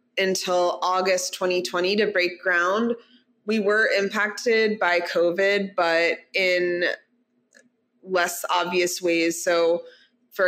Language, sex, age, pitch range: English, female, 20-39, 175-195 Hz